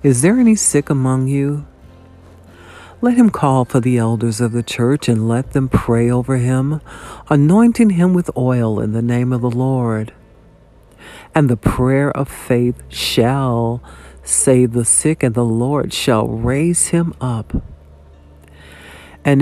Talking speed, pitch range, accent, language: 150 wpm, 110-145 Hz, American, English